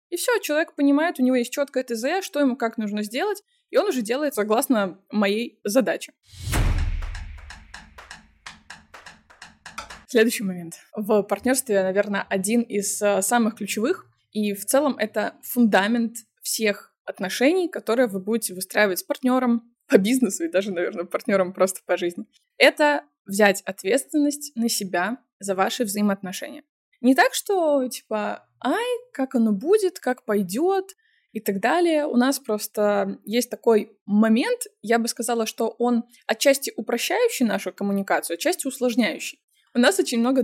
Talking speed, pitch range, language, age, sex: 140 wpm, 205-275 Hz, Russian, 20-39, female